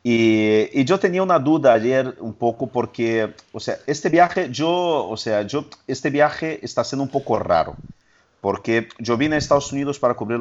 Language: Spanish